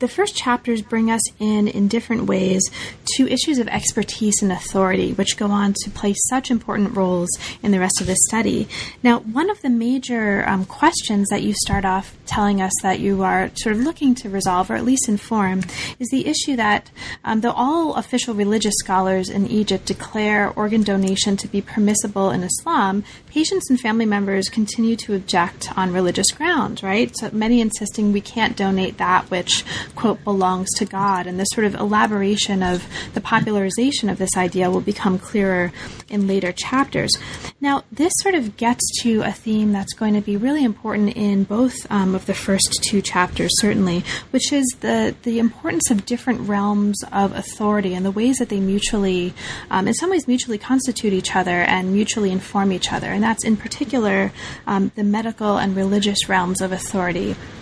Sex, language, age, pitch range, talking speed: female, English, 30-49, 190-230 Hz, 185 wpm